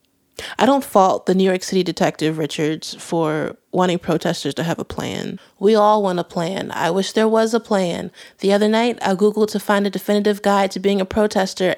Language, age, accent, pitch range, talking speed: English, 30-49, American, 190-240 Hz, 210 wpm